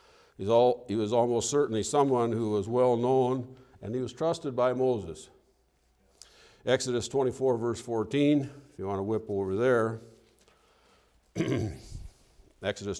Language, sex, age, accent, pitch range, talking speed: English, male, 60-79, American, 110-140 Hz, 130 wpm